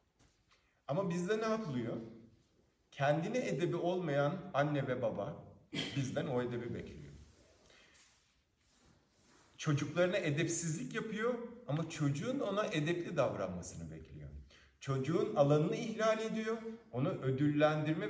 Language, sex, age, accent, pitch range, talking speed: Turkish, male, 50-69, native, 120-185 Hz, 95 wpm